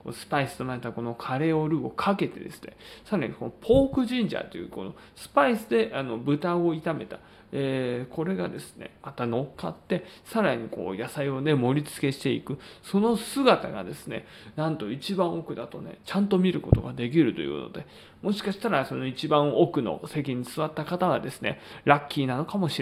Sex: male